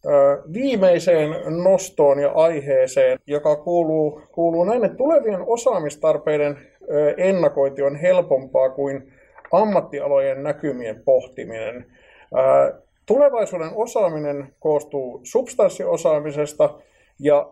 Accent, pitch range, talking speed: native, 140-190 Hz, 75 wpm